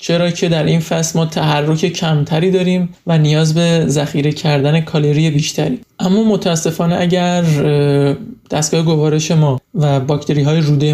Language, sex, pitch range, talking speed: Persian, male, 150-180 Hz, 145 wpm